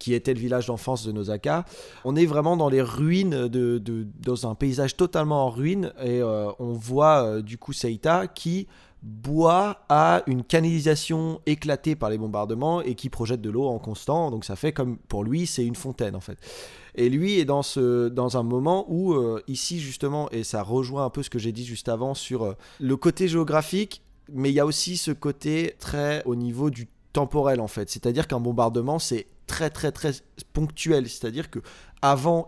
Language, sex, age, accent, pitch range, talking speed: French, male, 20-39, French, 120-150 Hz, 200 wpm